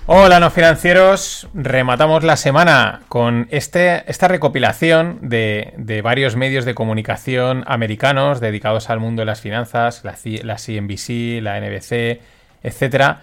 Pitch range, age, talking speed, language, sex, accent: 120-165 Hz, 30-49, 135 wpm, Spanish, male, Spanish